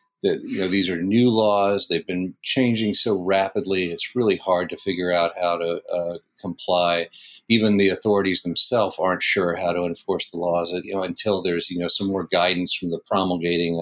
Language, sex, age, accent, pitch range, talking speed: English, male, 40-59, American, 90-100 Hz, 195 wpm